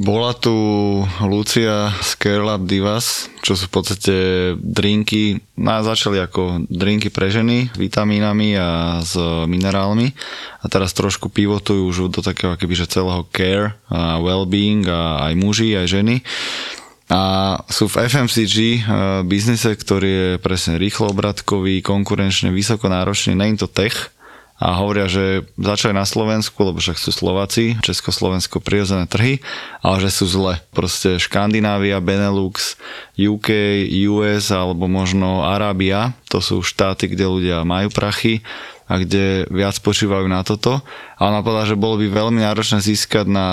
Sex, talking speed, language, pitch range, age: male, 140 wpm, Slovak, 95-105 Hz, 20-39